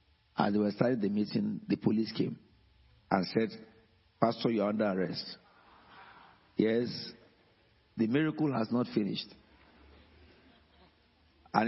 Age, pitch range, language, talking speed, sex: 50-69, 105-125 Hz, English, 115 wpm, male